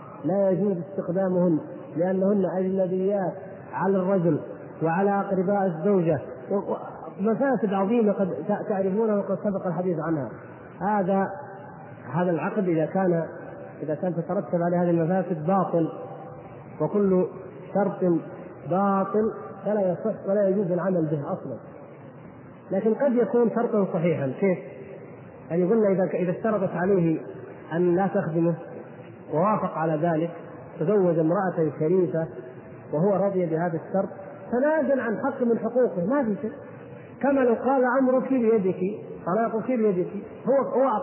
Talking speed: 120 wpm